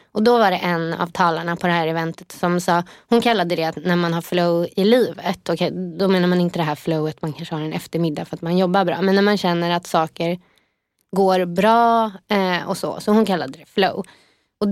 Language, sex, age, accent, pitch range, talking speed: English, female, 20-39, Swedish, 175-220 Hz, 230 wpm